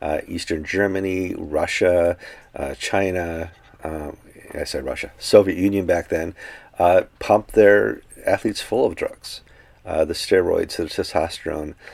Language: English